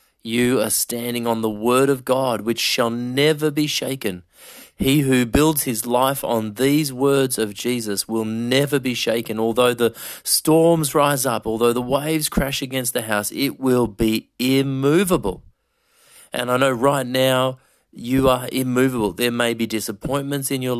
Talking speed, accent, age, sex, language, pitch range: 165 wpm, Australian, 30-49, male, English, 110-135 Hz